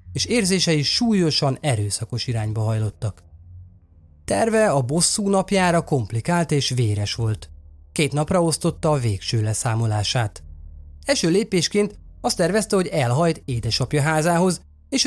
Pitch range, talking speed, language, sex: 105-165 Hz, 115 wpm, Hungarian, male